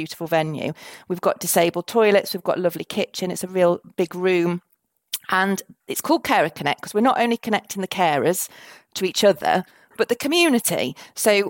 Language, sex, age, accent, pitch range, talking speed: English, female, 40-59, British, 175-225 Hz, 185 wpm